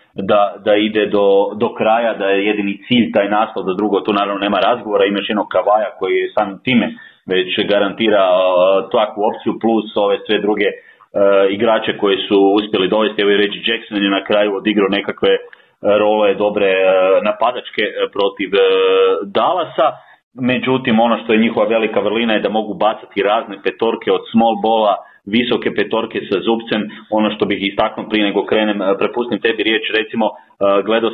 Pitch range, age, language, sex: 105-120 Hz, 30-49, Croatian, male